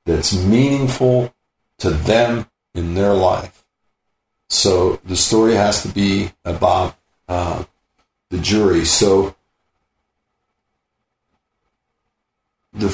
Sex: male